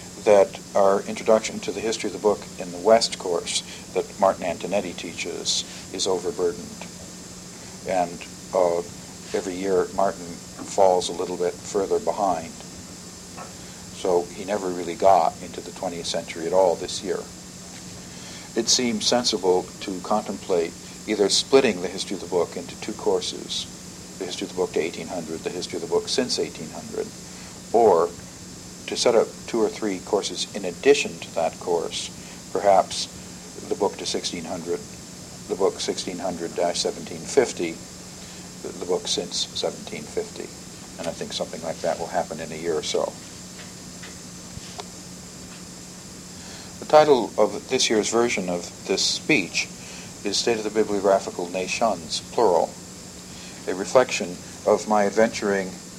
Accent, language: American, English